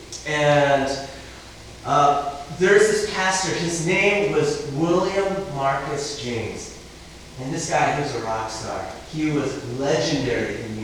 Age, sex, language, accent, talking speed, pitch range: 30-49, male, English, American, 135 wpm, 140-195 Hz